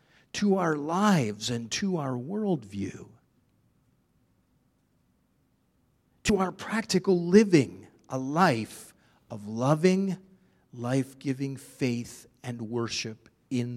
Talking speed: 85 wpm